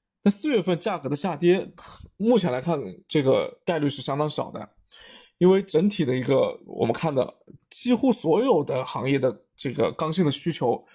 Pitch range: 150-215 Hz